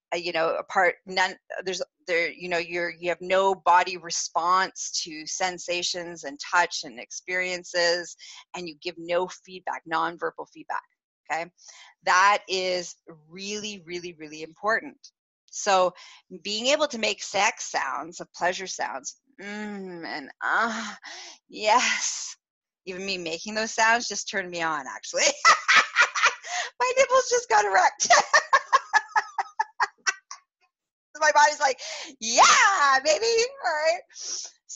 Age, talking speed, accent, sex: 30-49, 120 wpm, American, female